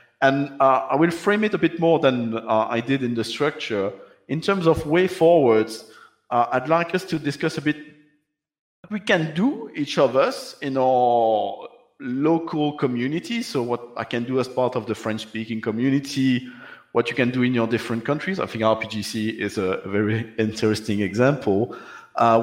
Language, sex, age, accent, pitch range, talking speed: English, male, 50-69, French, 110-150 Hz, 180 wpm